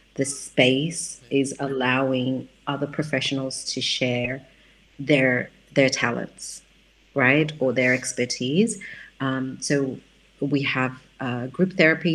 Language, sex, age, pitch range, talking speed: English, female, 30-49, 130-150 Hz, 110 wpm